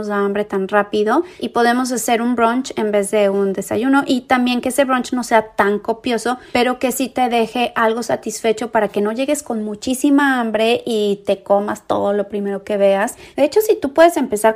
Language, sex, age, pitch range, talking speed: Spanish, female, 30-49, 205-245 Hz, 215 wpm